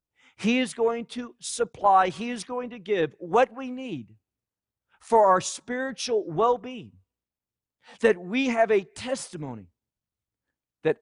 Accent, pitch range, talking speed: American, 135-225 Hz, 125 wpm